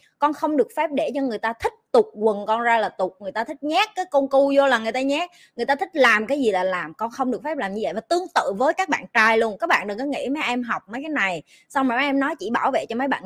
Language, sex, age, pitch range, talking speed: Vietnamese, female, 20-39, 215-290 Hz, 325 wpm